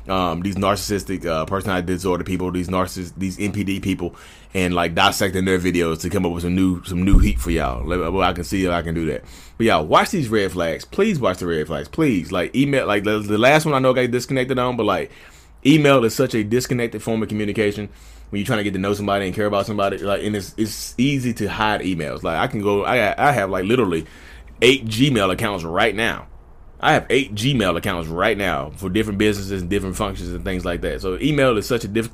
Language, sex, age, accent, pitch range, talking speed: English, male, 20-39, American, 90-125 Hz, 245 wpm